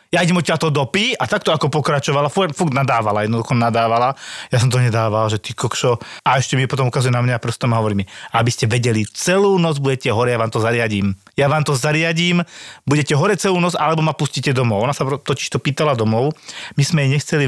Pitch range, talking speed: 120-150 Hz, 225 wpm